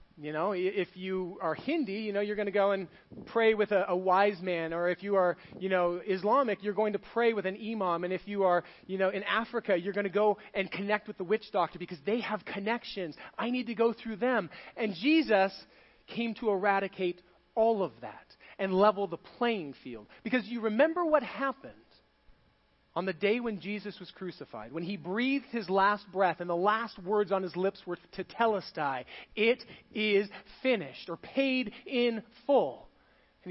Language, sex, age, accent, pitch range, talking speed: English, male, 40-59, American, 180-225 Hz, 195 wpm